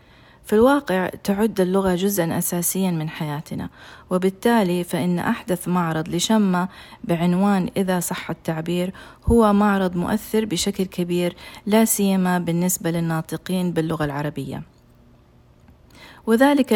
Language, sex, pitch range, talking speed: Arabic, female, 175-210 Hz, 105 wpm